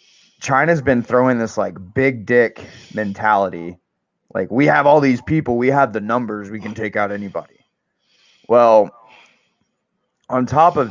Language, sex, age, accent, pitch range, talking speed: English, male, 20-39, American, 100-120 Hz, 150 wpm